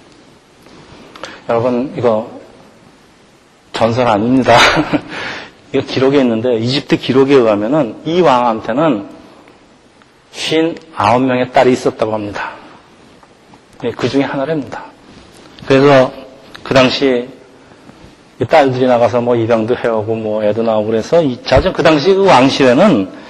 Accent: native